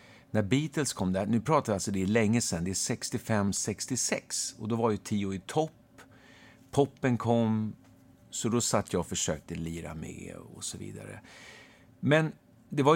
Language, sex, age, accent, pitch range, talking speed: Swedish, male, 50-69, native, 95-130 Hz, 175 wpm